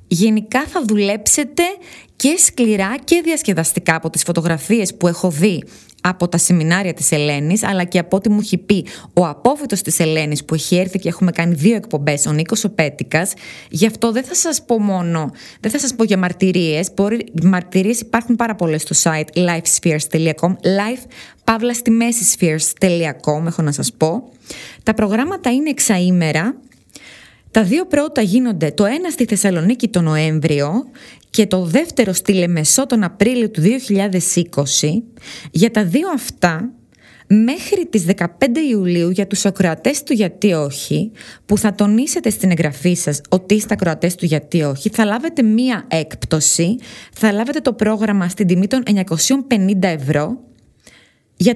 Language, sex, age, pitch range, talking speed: Greek, female, 20-39, 170-235 Hz, 150 wpm